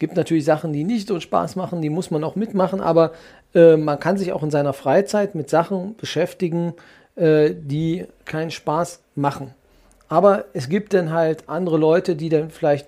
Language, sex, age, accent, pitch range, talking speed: German, male, 40-59, German, 145-170 Hz, 190 wpm